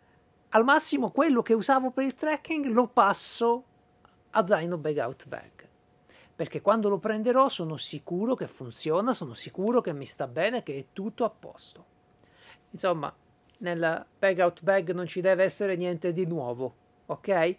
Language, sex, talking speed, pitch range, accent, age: Italian, male, 155 wpm, 155-225 Hz, native, 50-69